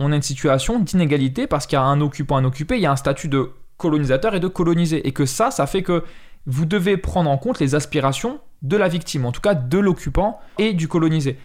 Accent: French